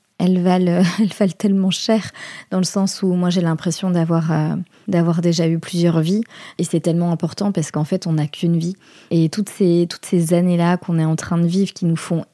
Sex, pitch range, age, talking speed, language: female, 175-195 Hz, 20-39, 225 wpm, French